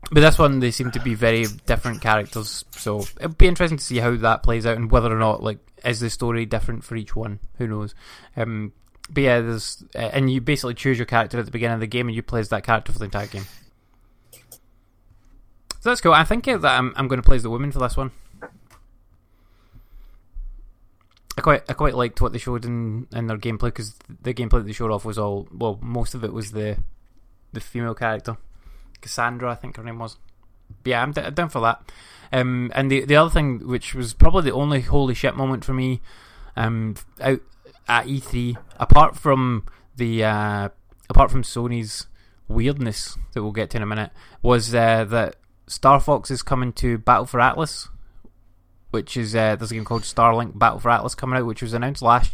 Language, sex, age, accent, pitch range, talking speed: English, male, 20-39, British, 105-125 Hz, 210 wpm